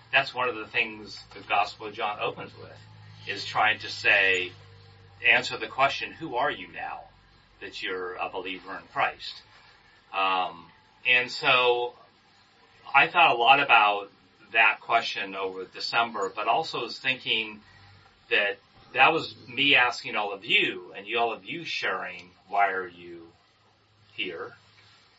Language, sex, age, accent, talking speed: English, male, 40-59, American, 145 wpm